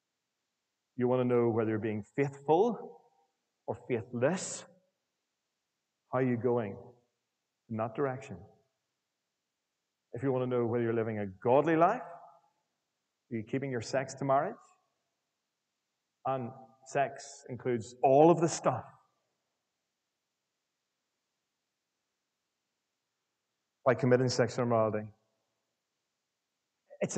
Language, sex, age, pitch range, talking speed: English, male, 30-49, 120-155 Hz, 105 wpm